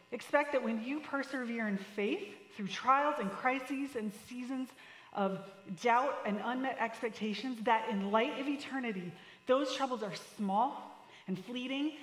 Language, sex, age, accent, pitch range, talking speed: English, female, 30-49, American, 195-275 Hz, 145 wpm